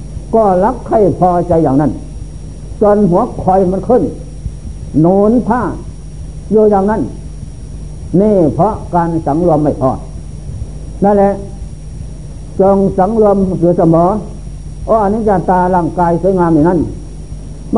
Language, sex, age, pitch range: Thai, male, 60-79, 165-200 Hz